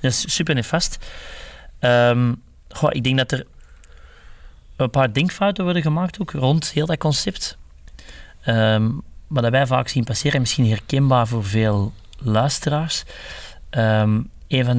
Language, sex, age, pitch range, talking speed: Dutch, male, 30-49, 110-135 Hz, 135 wpm